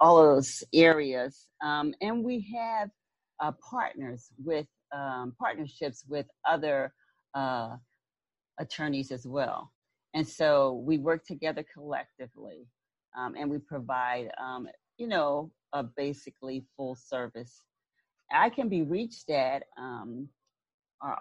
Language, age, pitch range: English, 40-59, 135-170 Hz